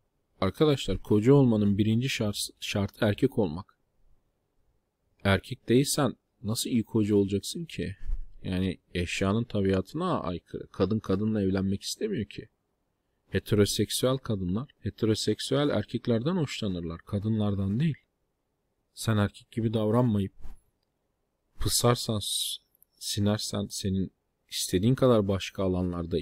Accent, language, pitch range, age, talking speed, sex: native, Turkish, 95-125 Hz, 40-59, 95 wpm, male